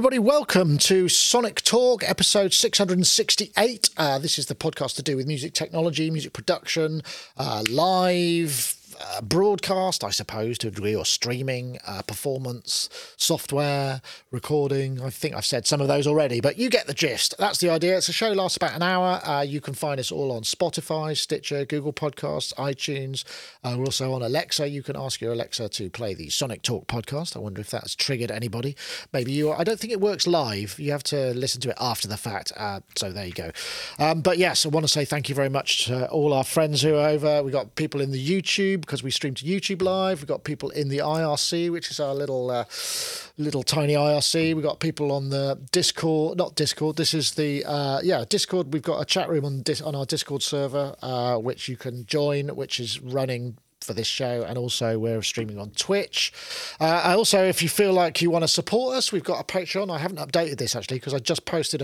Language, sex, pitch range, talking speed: English, male, 130-170 Hz, 215 wpm